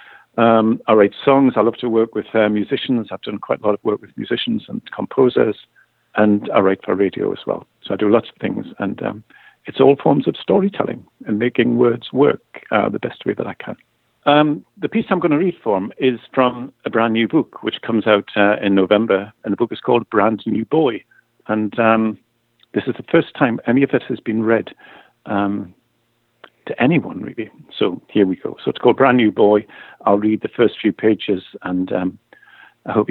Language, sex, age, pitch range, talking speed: English, male, 50-69, 110-135 Hz, 215 wpm